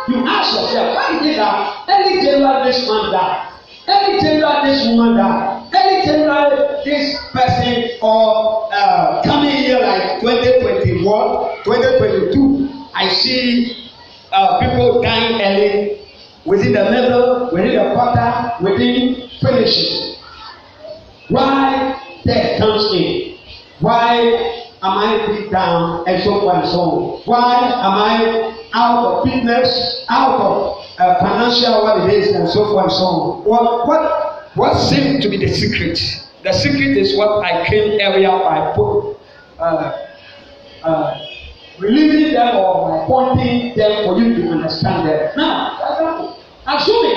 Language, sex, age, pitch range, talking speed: English, male, 50-69, 205-295 Hz, 135 wpm